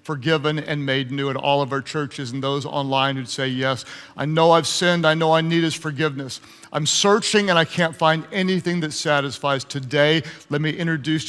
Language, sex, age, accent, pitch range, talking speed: English, male, 50-69, American, 150-185 Hz, 200 wpm